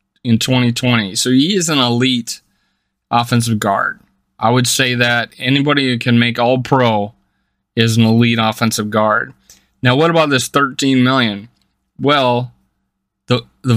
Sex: male